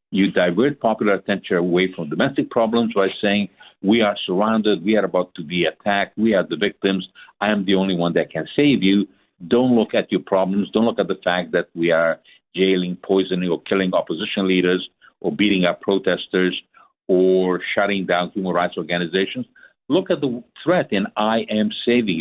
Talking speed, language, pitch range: 185 wpm, English, 95-120 Hz